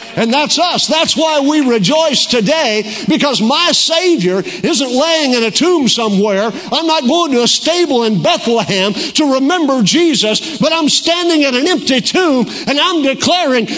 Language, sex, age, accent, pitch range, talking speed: English, male, 50-69, American, 160-250 Hz, 165 wpm